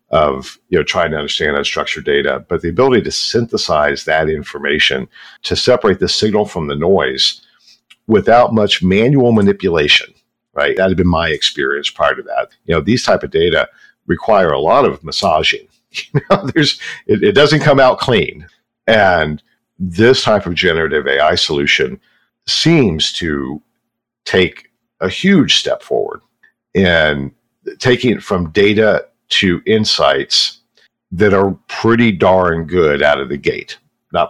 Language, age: English, 50-69